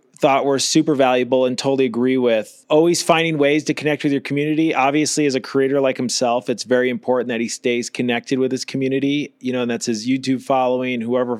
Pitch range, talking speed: 120-140 Hz, 210 wpm